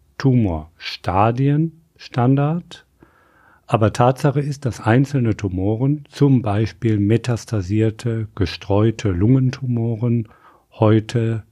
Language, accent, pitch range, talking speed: German, German, 100-130 Hz, 75 wpm